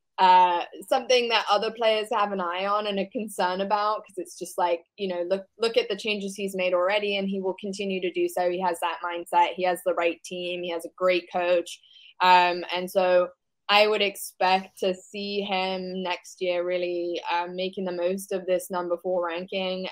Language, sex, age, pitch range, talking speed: English, female, 10-29, 175-200 Hz, 210 wpm